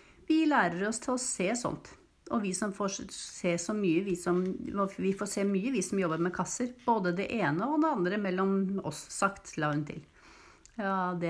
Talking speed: 200 wpm